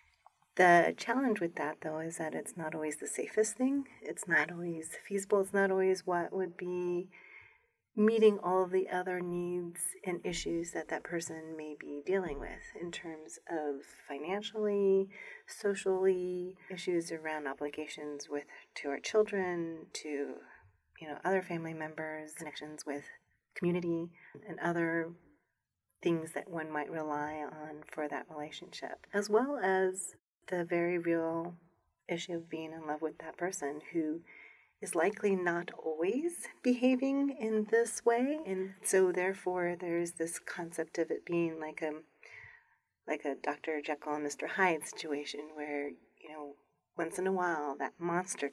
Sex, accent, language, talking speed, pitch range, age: female, American, English, 150 wpm, 155-190 Hz, 30-49